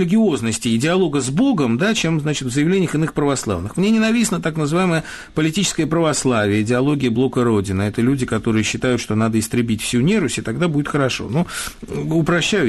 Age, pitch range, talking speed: 50-69, 120-180 Hz, 170 wpm